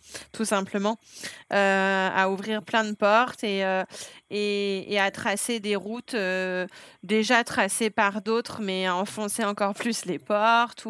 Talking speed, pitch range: 155 wpm, 195-220 Hz